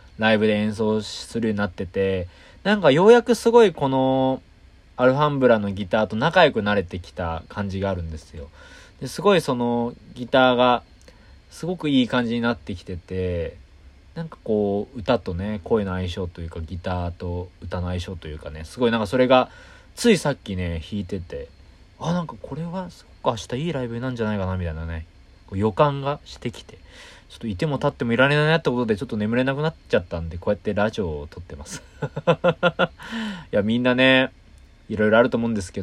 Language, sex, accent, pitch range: Japanese, male, native, 90-130 Hz